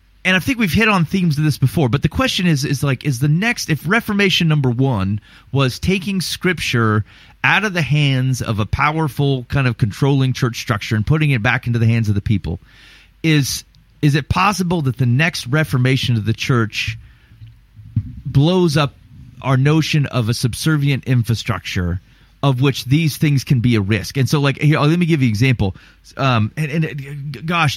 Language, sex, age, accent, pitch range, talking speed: English, male, 30-49, American, 115-155 Hz, 190 wpm